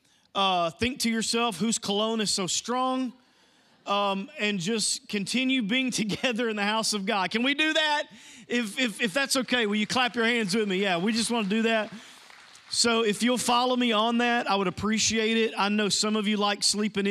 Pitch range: 155-215 Hz